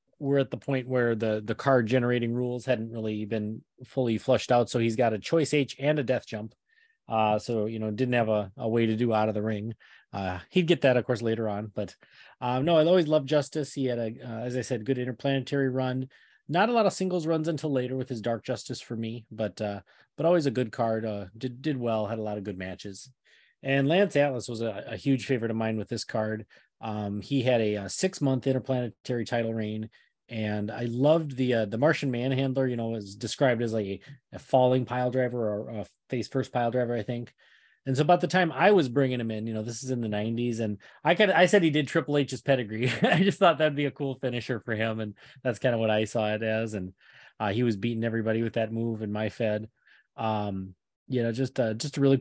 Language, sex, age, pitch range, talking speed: English, male, 30-49, 110-135 Hz, 245 wpm